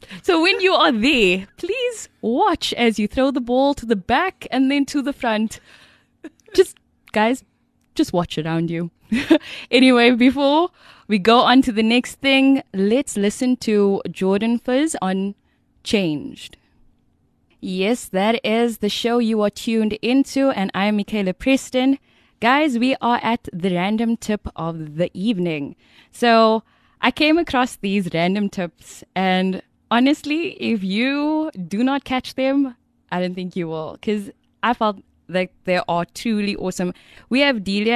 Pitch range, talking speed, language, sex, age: 190-265 Hz, 155 wpm, German, female, 10-29